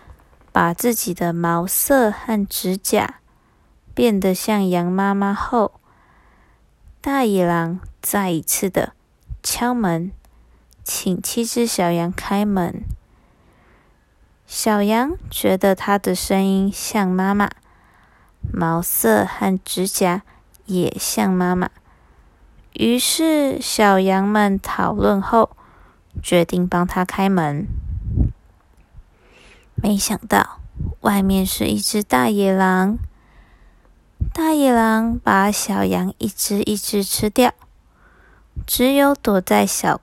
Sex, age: female, 20-39